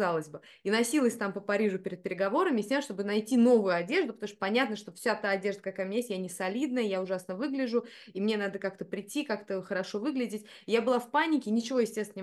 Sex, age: female, 20-39